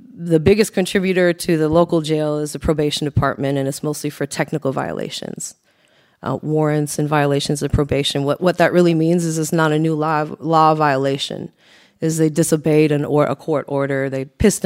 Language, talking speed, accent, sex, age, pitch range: English, 190 wpm, American, female, 30-49, 145-170 Hz